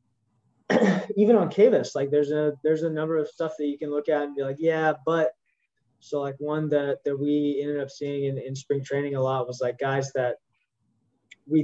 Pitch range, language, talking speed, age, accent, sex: 130-155 Hz, English, 210 wpm, 20-39, American, male